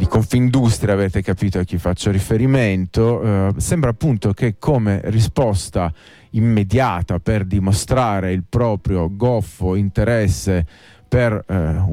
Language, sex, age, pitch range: Italian, male, 30-49, 95-115 Hz